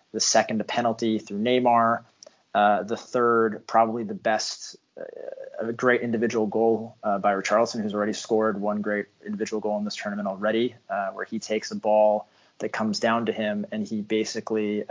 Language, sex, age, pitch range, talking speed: English, male, 20-39, 105-115 Hz, 180 wpm